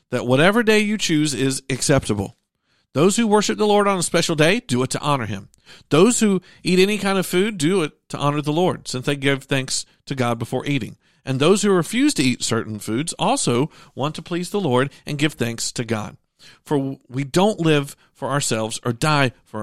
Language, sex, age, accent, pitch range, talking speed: English, male, 50-69, American, 130-190 Hz, 215 wpm